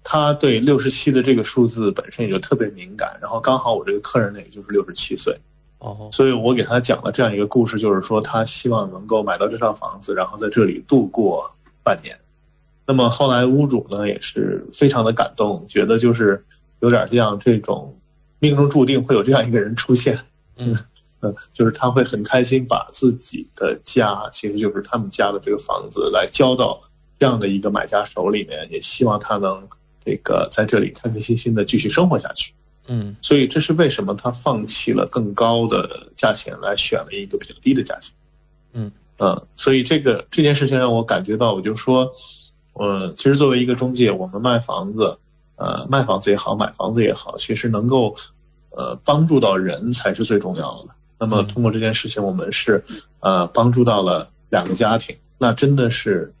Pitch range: 110-135 Hz